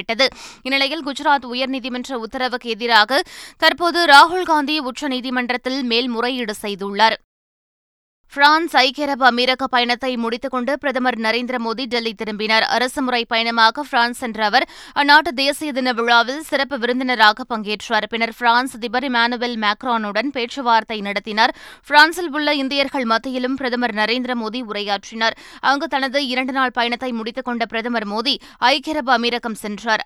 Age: 20-39